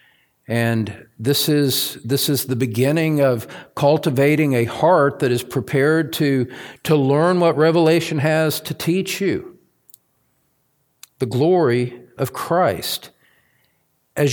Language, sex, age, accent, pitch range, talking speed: English, male, 50-69, American, 110-145 Hz, 115 wpm